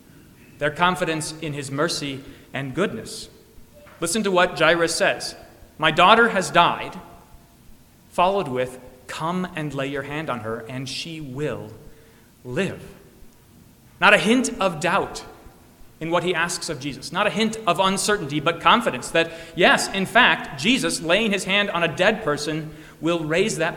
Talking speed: 155 wpm